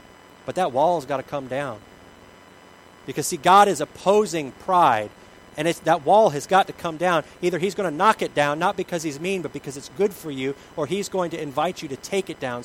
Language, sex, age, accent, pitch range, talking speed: English, male, 40-59, American, 110-165 Hz, 230 wpm